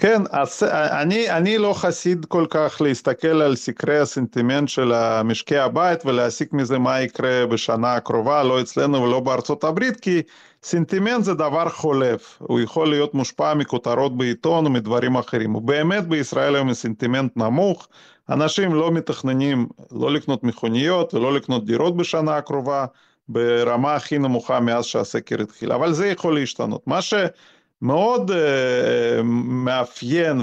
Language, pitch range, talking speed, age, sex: Hebrew, 125-165 Hz, 140 wpm, 40-59, male